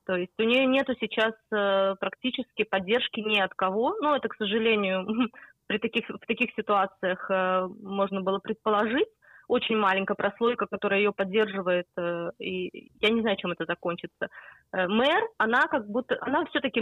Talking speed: 155 wpm